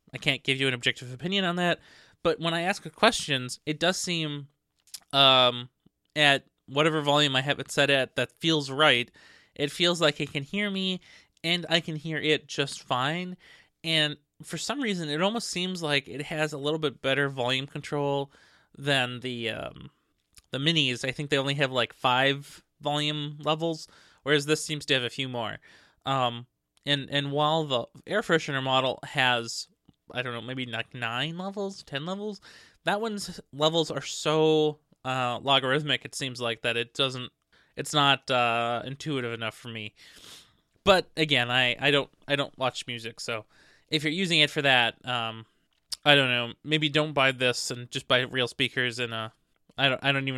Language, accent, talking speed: English, American, 185 wpm